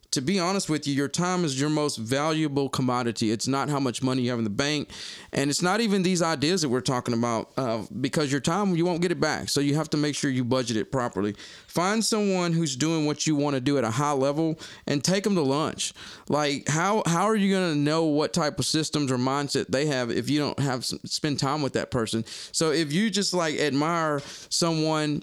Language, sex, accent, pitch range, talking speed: English, male, American, 140-170 Hz, 245 wpm